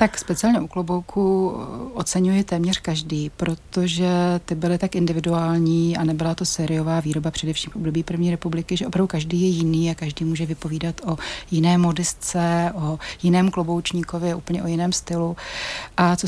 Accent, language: native, Czech